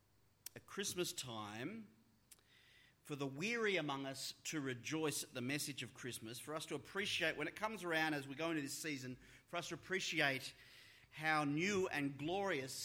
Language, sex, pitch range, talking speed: English, male, 125-160 Hz, 175 wpm